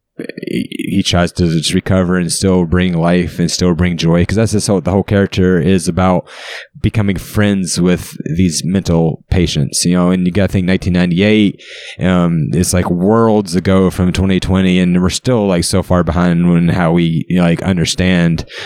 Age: 20-39